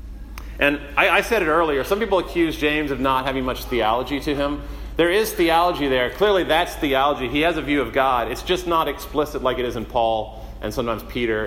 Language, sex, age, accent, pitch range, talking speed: English, male, 40-59, American, 120-165 Hz, 220 wpm